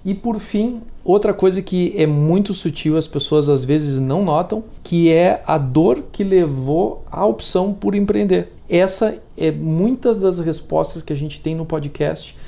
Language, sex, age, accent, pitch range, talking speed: Portuguese, male, 40-59, Brazilian, 140-170 Hz, 175 wpm